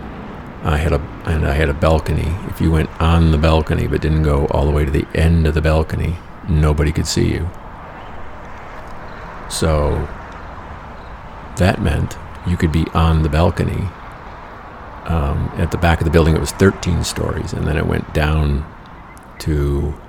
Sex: male